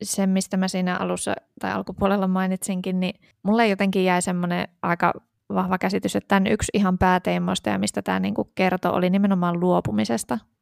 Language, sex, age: Finnish, female, 20-39